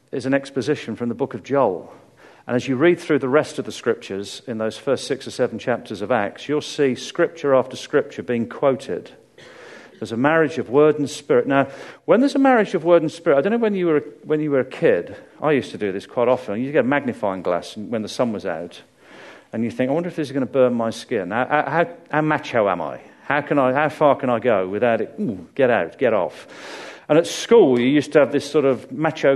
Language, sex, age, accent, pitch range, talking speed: English, male, 40-59, British, 125-160 Hz, 250 wpm